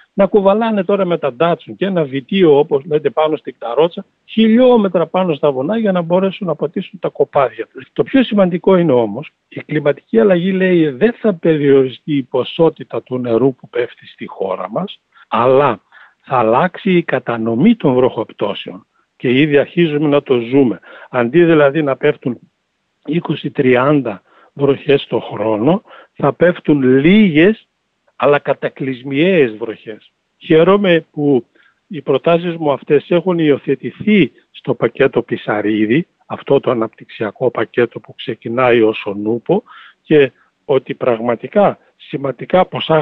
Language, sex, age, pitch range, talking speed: Greek, male, 60-79, 130-185 Hz, 135 wpm